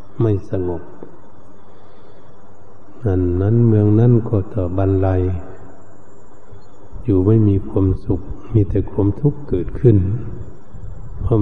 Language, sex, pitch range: Thai, male, 100-110 Hz